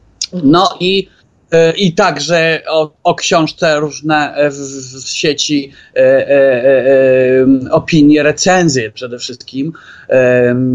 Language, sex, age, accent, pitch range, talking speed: Polish, male, 30-49, native, 135-165 Hz, 105 wpm